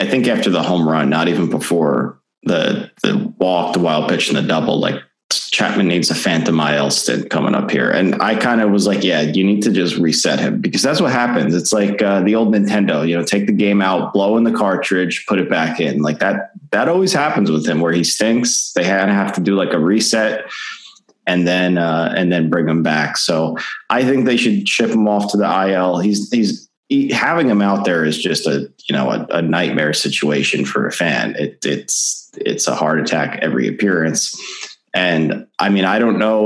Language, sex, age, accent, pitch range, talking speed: English, male, 20-39, American, 90-105 Hz, 220 wpm